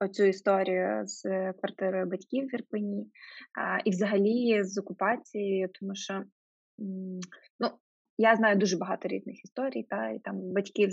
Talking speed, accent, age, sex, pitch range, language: 135 wpm, native, 20-39, female, 190-215 Hz, Ukrainian